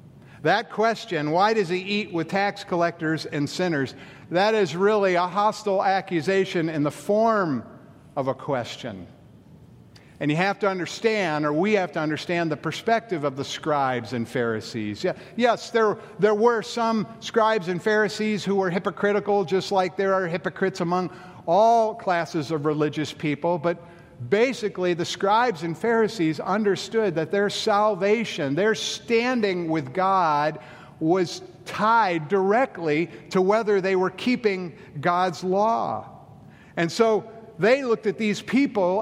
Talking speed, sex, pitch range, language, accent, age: 145 wpm, male, 155-210 Hz, English, American, 50-69